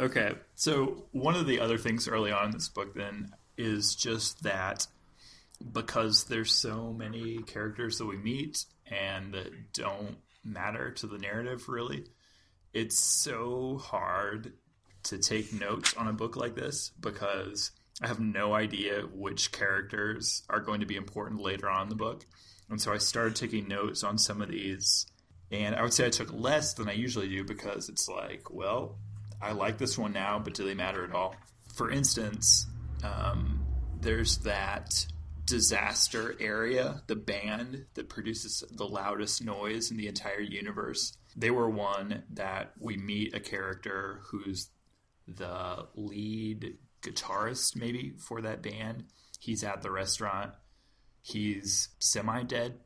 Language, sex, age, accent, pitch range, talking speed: English, male, 20-39, American, 100-115 Hz, 155 wpm